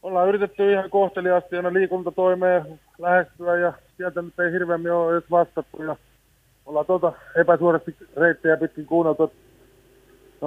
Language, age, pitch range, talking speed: Finnish, 20-39, 160-180 Hz, 120 wpm